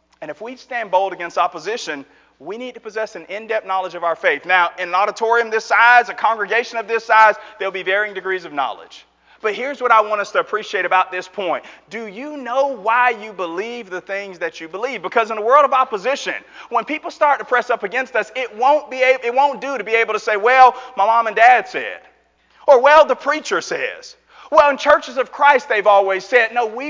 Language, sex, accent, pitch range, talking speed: English, male, American, 200-270 Hz, 225 wpm